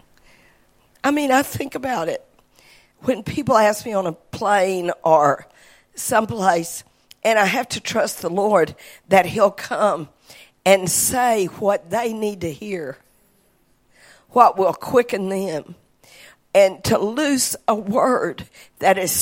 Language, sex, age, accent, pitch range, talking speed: English, female, 50-69, American, 175-240 Hz, 135 wpm